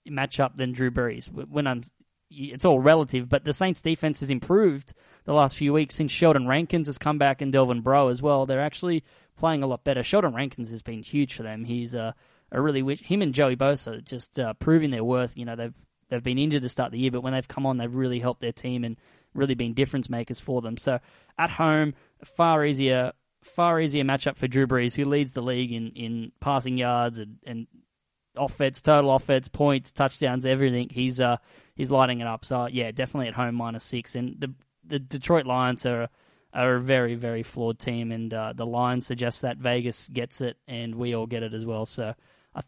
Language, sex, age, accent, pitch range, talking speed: English, male, 20-39, Australian, 120-145 Hz, 215 wpm